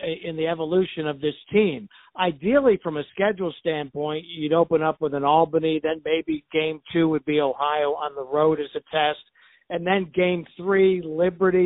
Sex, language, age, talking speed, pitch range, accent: male, English, 60-79, 180 wpm, 150-180 Hz, American